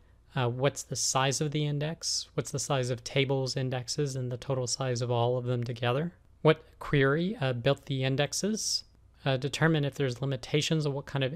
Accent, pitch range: American, 130-155 Hz